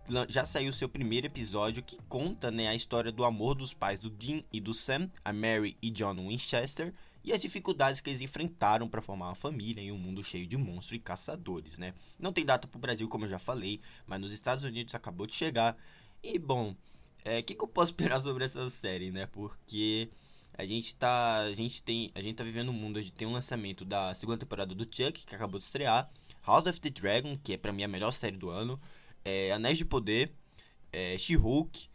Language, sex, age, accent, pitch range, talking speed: Portuguese, male, 20-39, Brazilian, 100-130 Hz, 225 wpm